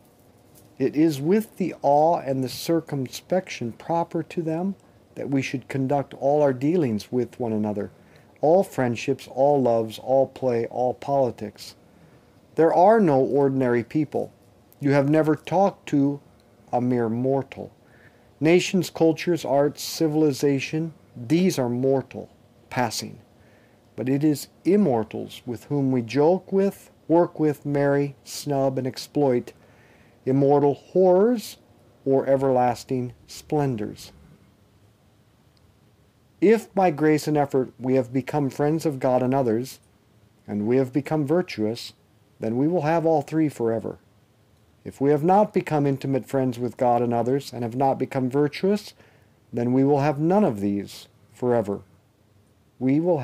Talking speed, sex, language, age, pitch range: 135 wpm, male, English, 50-69, 120-150 Hz